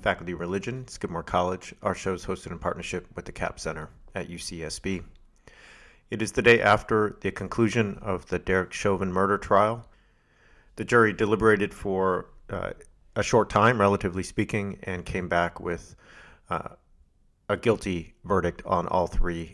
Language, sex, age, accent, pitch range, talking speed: English, male, 40-59, American, 85-105 Hz, 155 wpm